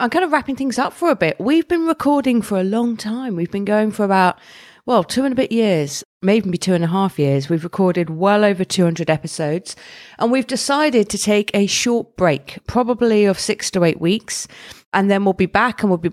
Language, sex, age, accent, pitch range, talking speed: English, female, 40-59, British, 165-220 Hz, 230 wpm